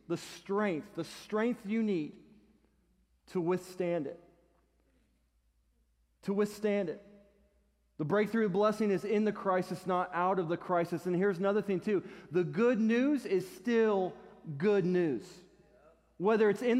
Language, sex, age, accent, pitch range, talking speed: English, male, 40-59, American, 160-210 Hz, 140 wpm